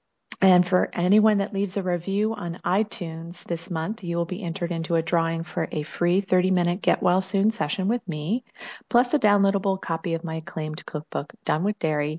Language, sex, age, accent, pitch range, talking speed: English, female, 30-49, American, 160-200 Hz, 190 wpm